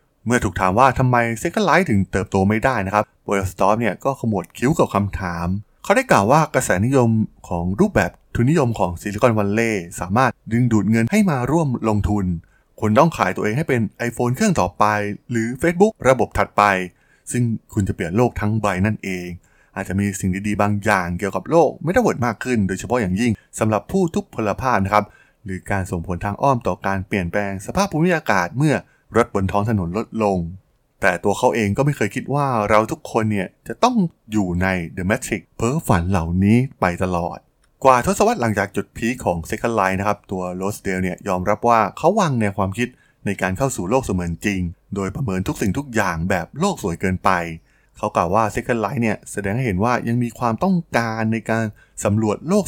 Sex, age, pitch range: male, 20-39, 95-120 Hz